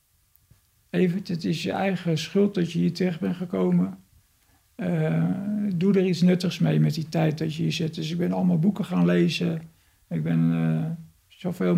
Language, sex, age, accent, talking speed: Dutch, male, 50-69, Dutch, 180 wpm